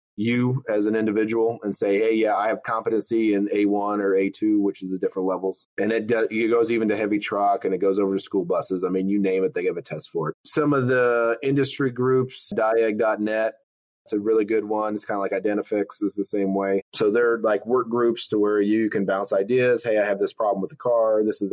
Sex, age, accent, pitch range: male, 30-49, American, 100-115 Hz